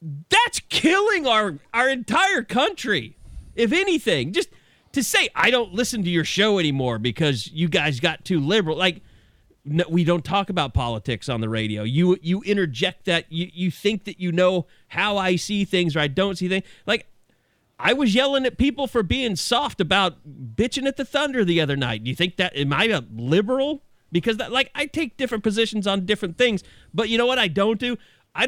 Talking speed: 200 wpm